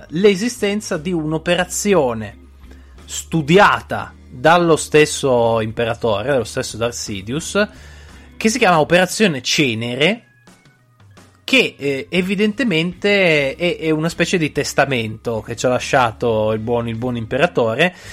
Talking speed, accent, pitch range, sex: 100 wpm, native, 120-175 Hz, male